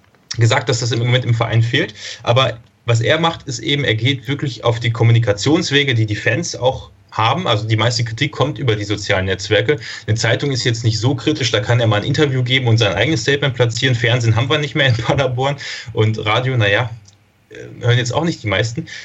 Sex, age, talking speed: male, 30-49, 215 wpm